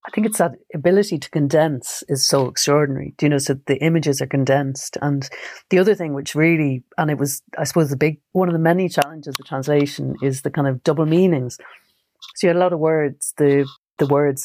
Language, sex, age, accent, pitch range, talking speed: English, female, 40-59, Irish, 140-160 Hz, 225 wpm